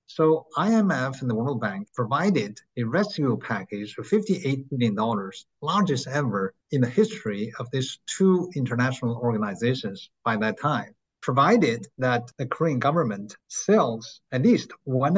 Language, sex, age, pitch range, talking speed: English, male, 50-69, 120-165 Hz, 140 wpm